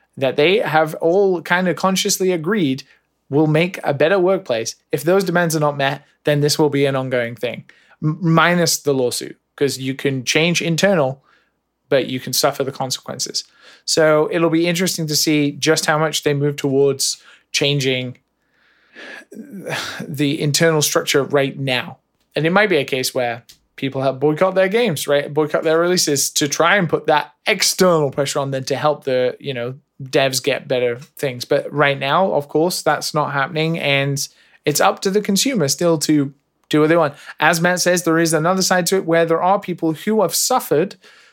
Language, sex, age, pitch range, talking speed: English, male, 20-39, 140-180 Hz, 185 wpm